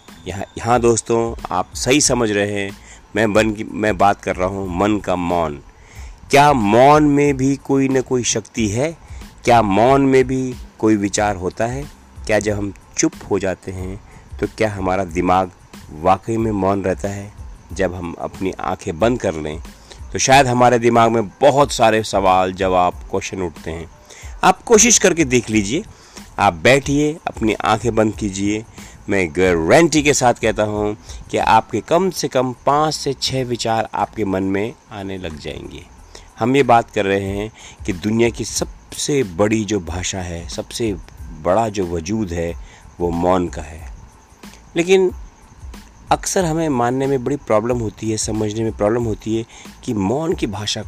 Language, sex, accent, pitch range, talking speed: Hindi, male, native, 95-125 Hz, 170 wpm